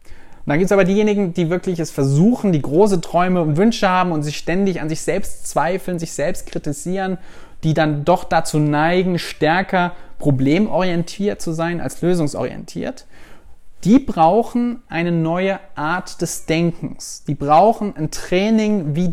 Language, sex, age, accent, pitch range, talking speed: German, male, 30-49, German, 155-205 Hz, 150 wpm